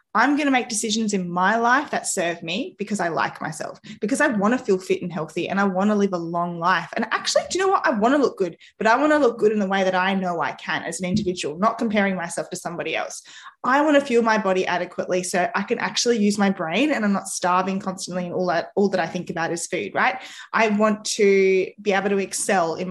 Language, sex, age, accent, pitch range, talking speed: English, female, 20-39, Australian, 180-225 Hz, 270 wpm